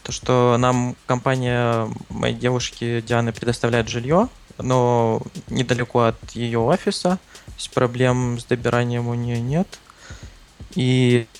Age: 20-39